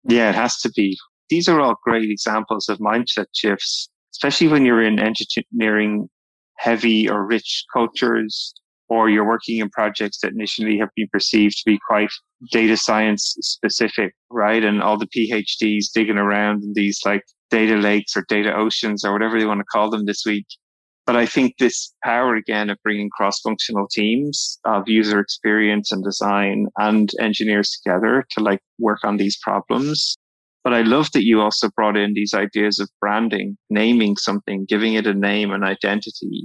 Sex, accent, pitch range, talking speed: male, Irish, 105-110 Hz, 175 wpm